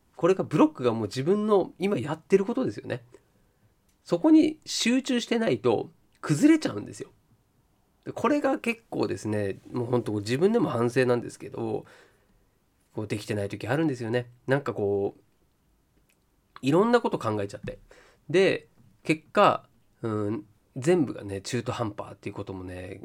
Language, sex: Japanese, male